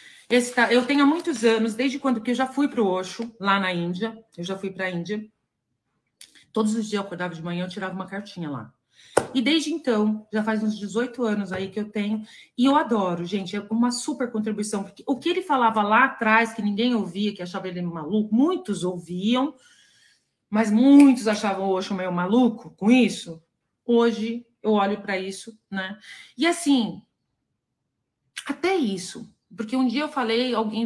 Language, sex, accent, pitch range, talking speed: Portuguese, female, Brazilian, 200-275 Hz, 185 wpm